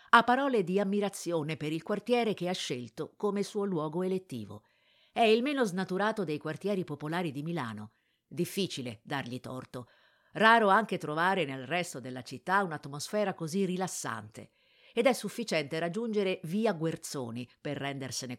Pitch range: 145-200 Hz